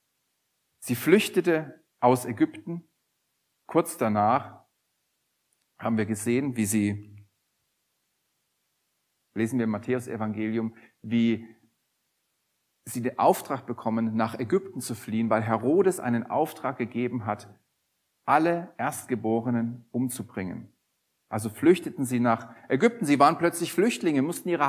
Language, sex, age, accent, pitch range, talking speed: German, male, 40-59, German, 115-150 Hz, 105 wpm